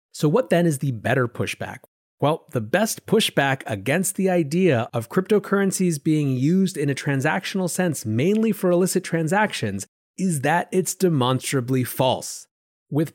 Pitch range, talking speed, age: 125-185 Hz, 145 wpm, 30-49